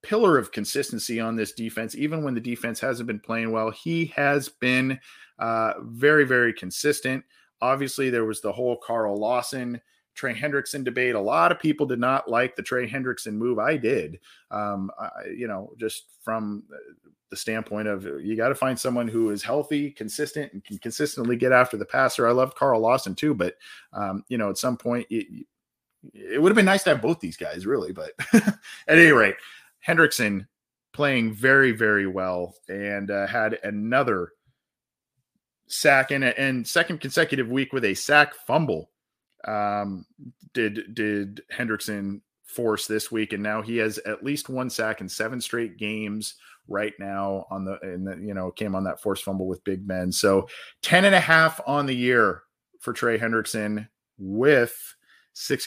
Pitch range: 105-135 Hz